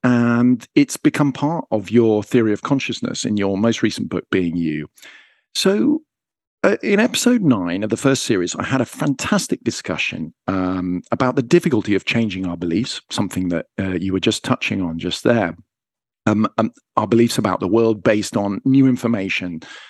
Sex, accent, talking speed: male, British, 180 wpm